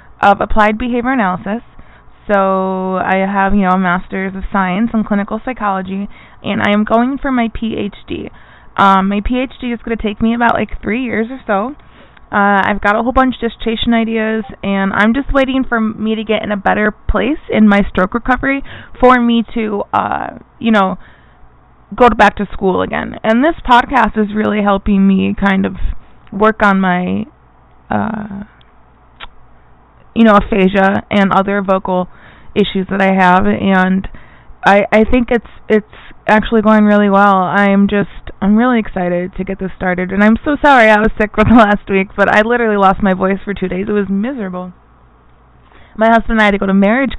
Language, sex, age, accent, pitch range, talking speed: English, female, 20-39, American, 195-230 Hz, 185 wpm